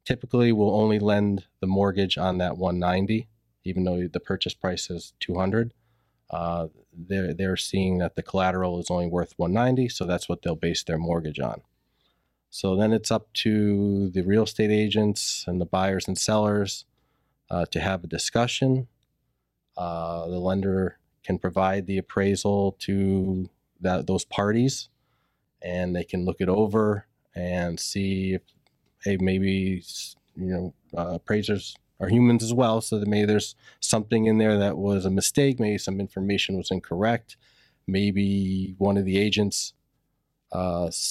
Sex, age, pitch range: male, 30-49, 90-110 Hz